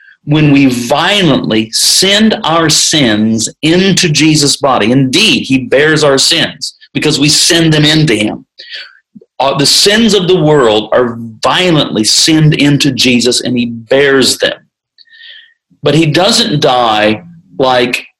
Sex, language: male, English